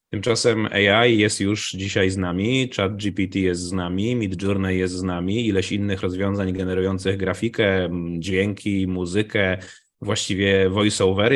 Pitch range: 95-105 Hz